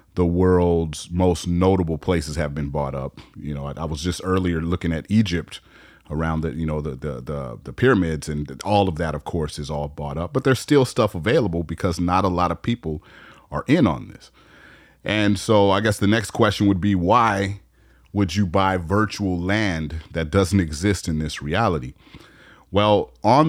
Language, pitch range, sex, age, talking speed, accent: English, 80-100 Hz, male, 30-49, 195 wpm, American